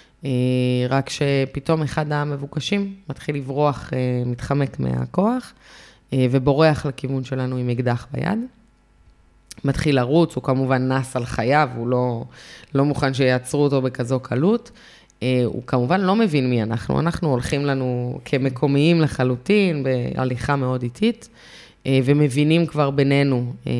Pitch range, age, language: 125-155 Hz, 20-39, Hebrew